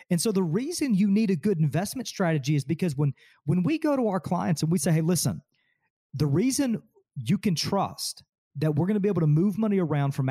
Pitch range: 150-200 Hz